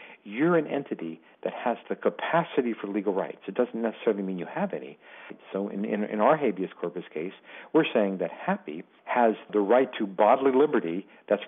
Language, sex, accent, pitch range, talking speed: English, male, American, 100-115 Hz, 190 wpm